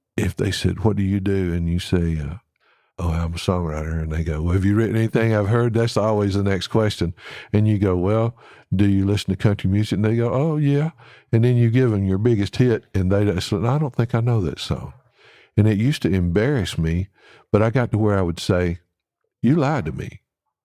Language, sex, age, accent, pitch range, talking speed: English, male, 60-79, American, 85-110 Hz, 235 wpm